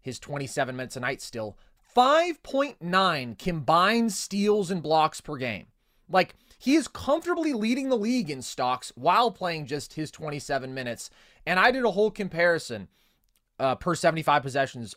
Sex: male